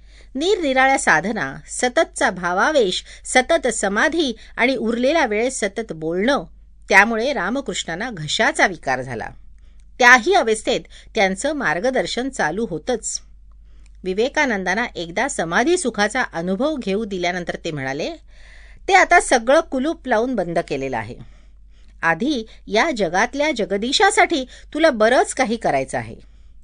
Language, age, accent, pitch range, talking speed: Marathi, 50-69, native, 170-265 Hz, 110 wpm